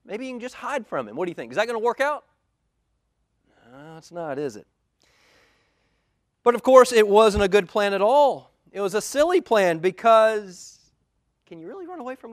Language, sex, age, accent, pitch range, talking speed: English, male, 30-49, American, 165-255 Hz, 215 wpm